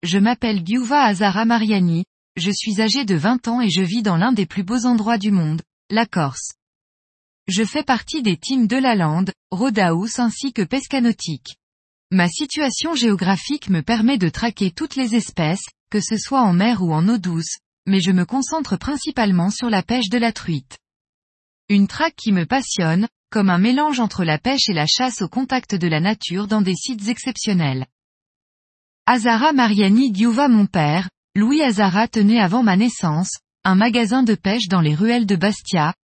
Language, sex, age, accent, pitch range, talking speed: French, female, 20-39, French, 185-245 Hz, 180 wpm